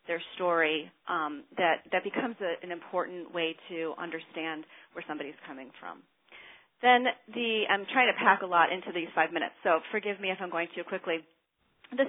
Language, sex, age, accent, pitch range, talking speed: English, female, 40-59, American, 170-205 Hz, 185 wpm